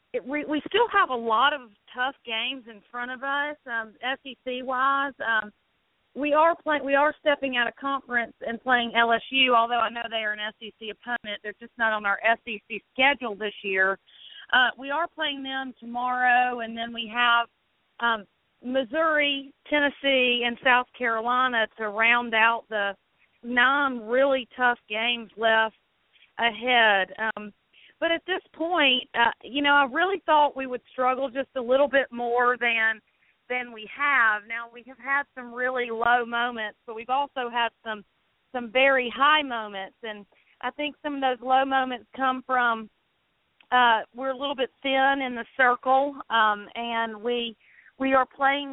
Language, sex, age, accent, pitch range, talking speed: English, female, 40-59, American, 225-265 Hz, 170 wpm